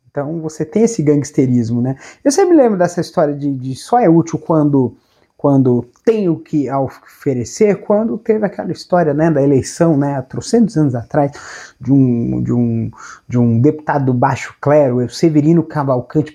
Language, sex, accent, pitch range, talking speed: Portuguese, male, Brazilian, 130-185 Hz, 175 wpm